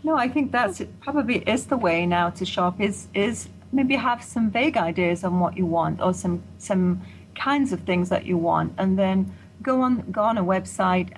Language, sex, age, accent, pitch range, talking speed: English, female, 40-59, British, 175-225 Hz, 215 wpm